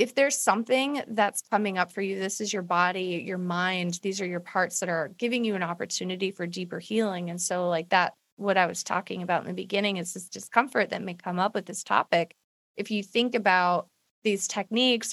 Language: English